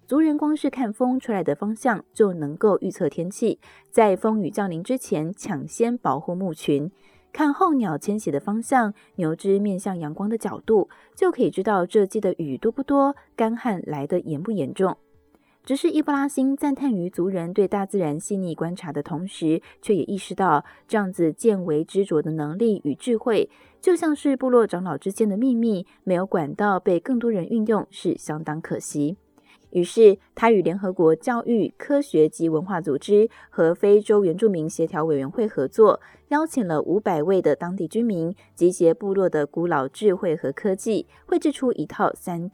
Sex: female